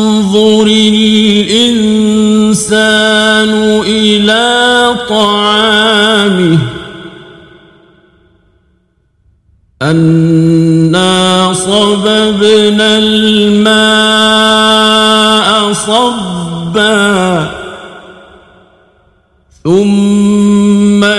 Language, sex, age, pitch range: Persian, male, 50-69, 170-210 Hz